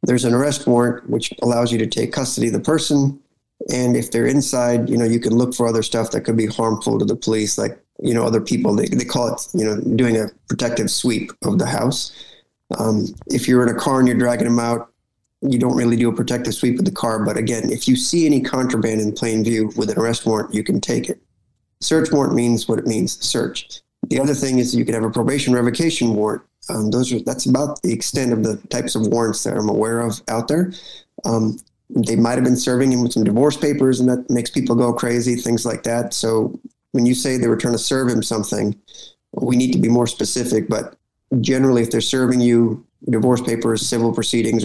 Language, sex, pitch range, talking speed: English, male, 115-125 Hz, 230 wpm